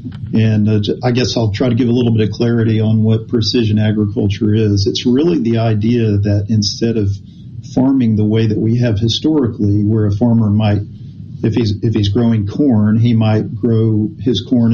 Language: English